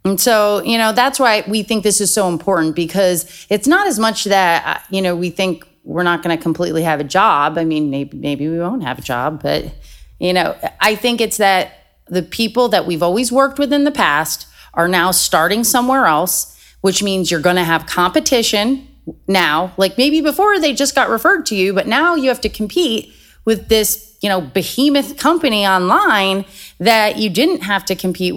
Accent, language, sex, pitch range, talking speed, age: American, English, female, 165-225 Hz, 205 wpm, 30-49